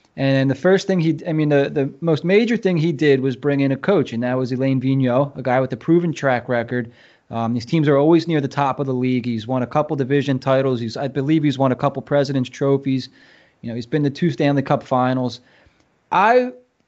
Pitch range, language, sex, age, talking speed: 135-165 Hz, English, male, 20-39, 240 wpm